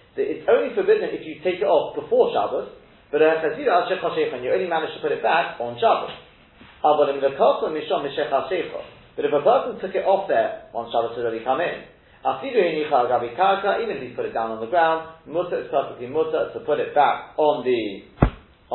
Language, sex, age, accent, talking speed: English, male, 40-59, British, 180 wpm